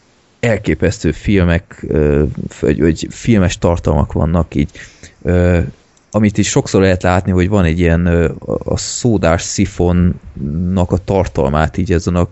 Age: 20-39